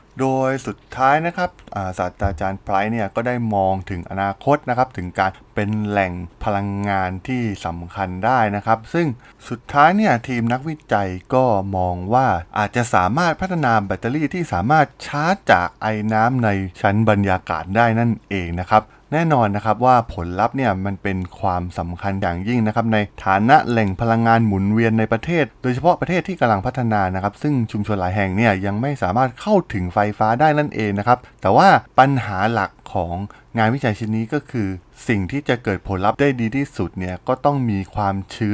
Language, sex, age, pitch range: Thai, male, 20-39, 95-125 Hz